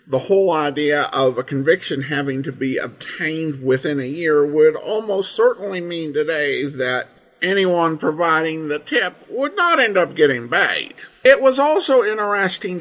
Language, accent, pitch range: English, American, 130-170 Hz